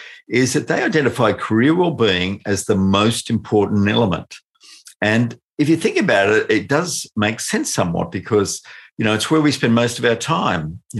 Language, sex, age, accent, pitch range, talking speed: English, male, 50-69, Australian, 95-115 Hz, 185 wpm